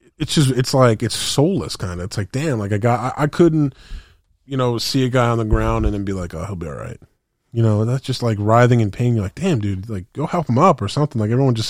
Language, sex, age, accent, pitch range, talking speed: English, male, 20-39, American, 100-125 Hz, 280 wpm